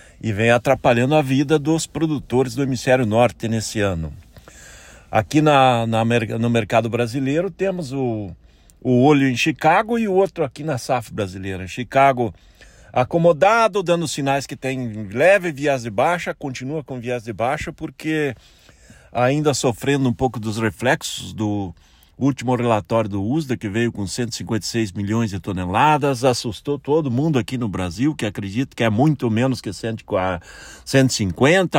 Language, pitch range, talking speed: Portuguese, 110-145 Hz, 150 wpm